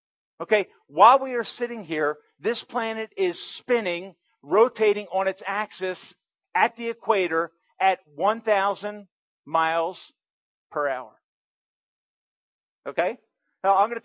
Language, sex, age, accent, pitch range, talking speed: English, male, 40-59, American, 195-250 Hz, 115 wpm